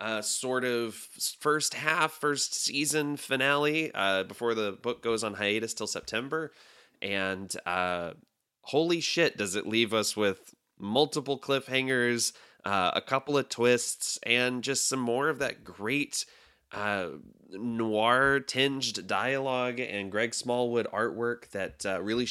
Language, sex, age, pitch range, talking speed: English, male, 20-39, 95-125 Hz, 135 wpm